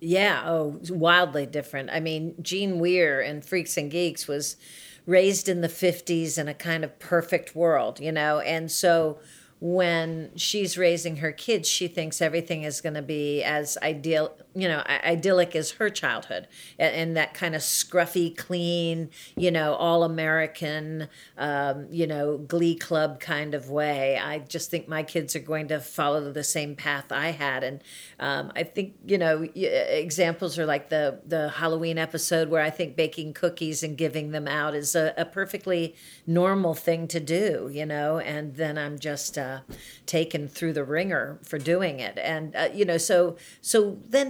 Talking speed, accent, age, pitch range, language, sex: 175 wpm, American, 50-69, 150-175 Hz, English, female